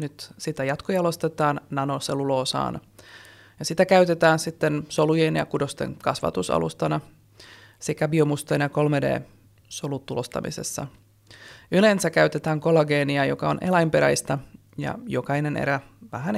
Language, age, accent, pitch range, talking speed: Finnish, 30-49, native, 135-165 Hz, 105 wpm